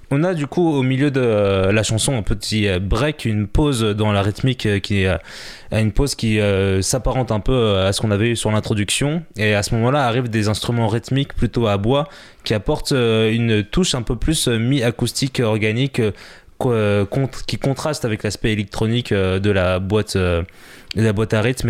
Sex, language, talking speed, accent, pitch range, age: male, French, 185 wpm, French, 105-125 Hz, 20-39